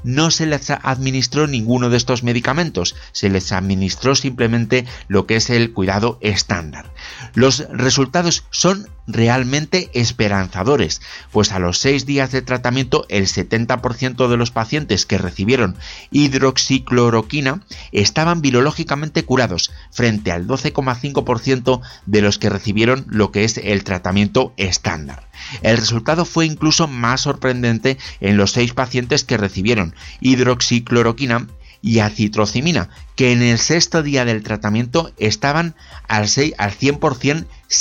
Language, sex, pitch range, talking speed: Spanish, male, 105-135 Hz, 125 wpm